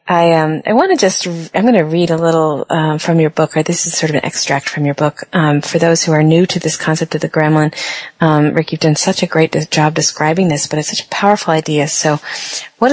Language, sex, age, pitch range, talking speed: English, female, 40-59, 155-180 Hz, 265 wpm